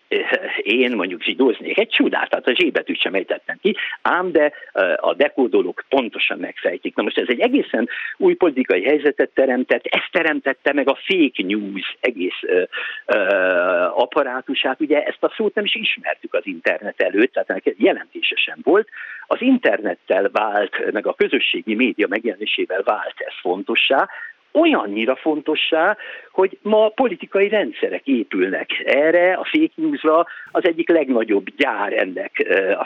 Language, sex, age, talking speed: Hungarian, male, 50-69, 140 wpm